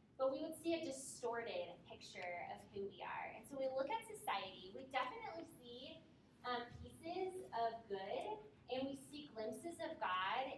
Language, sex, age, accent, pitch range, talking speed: English, female, 10-29, American, 200-265 Hz, 170 wpm